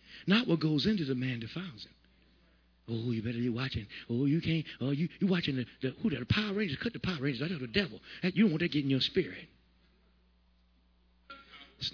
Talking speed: 220 wpm